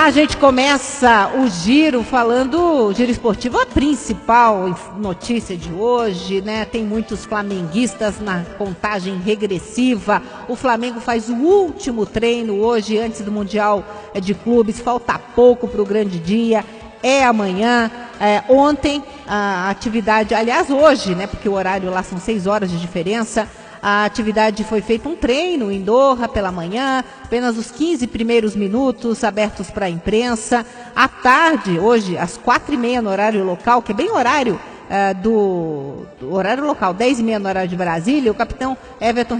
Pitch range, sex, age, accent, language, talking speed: 205-245 Hz, female, 50-69, Brazilian, English, 155 wpm